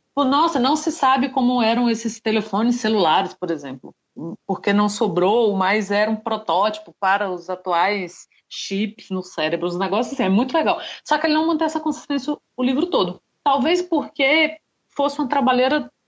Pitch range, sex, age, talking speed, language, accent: 200-285 Hz, female, 30-49, 170 wpm, Portuguese, Brazilian